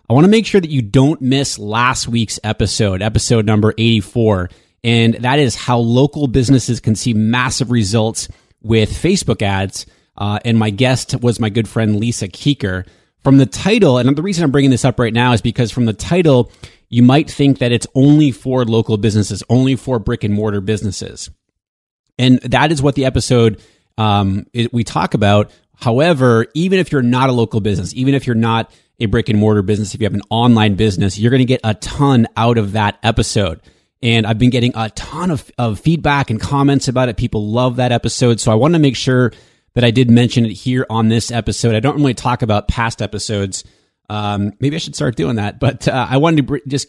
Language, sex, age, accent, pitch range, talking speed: English, male, 30-49, American, 110-130 Hz, 210 wpm